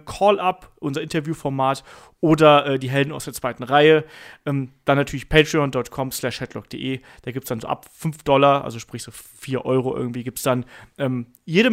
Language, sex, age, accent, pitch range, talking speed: German, male, 30-49, German, 135-175 Hz, 180 wpm